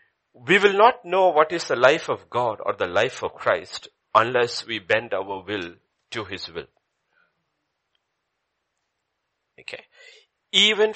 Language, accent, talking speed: English, Indian, 135 wpm